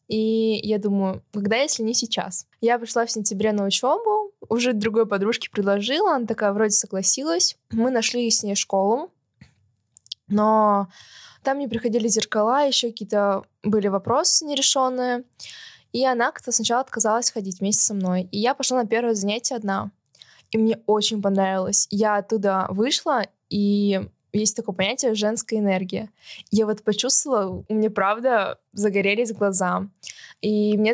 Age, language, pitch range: 20-39, Russian, 205-235 Hz